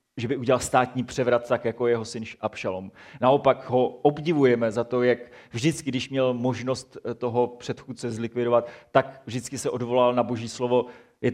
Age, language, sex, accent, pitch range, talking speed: 30-49, Czech, male, native, 115-135 Hz, 165 wpm